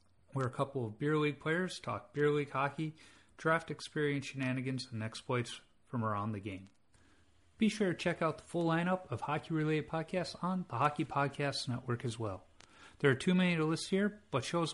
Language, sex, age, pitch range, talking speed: English, male, 40-59, 115-160 Hz, 190 wpm